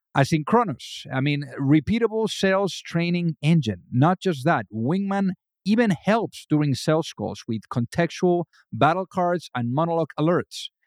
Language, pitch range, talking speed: English, 135-170 Hz, 125 wpm